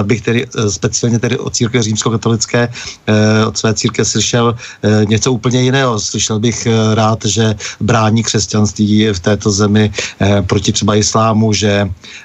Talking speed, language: 130 wpm, Slovak